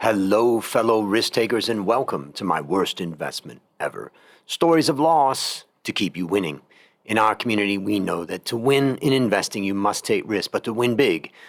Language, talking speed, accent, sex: English, 190 wpm, American, male